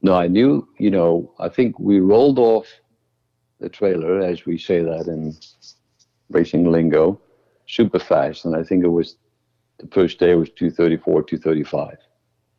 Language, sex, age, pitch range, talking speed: English, male, 60-79, 80-95 Hz, 155 wpm